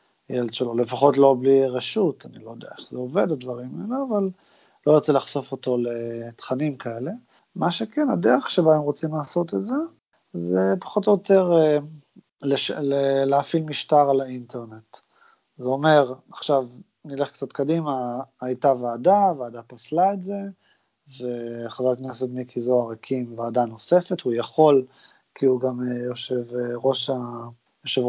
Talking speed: 145 wpm